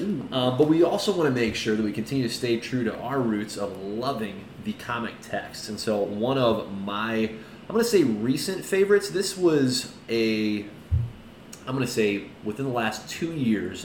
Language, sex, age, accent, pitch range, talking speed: English, male, 30-49, American, 110-135 Hz, 195 wpm